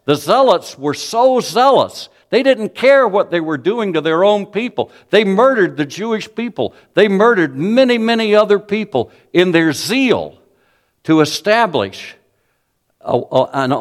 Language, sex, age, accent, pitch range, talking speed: English, male, 60-79, American, 130-195 Hz, 145 wpm